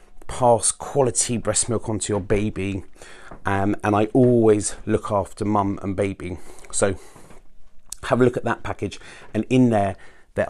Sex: male